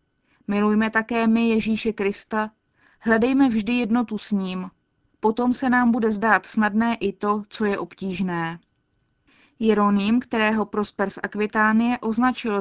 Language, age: Czech, 20-39